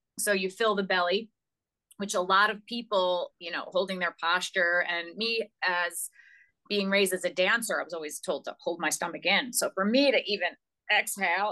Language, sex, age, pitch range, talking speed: English, female, 30-49, 180-220 Hz, 200 wpm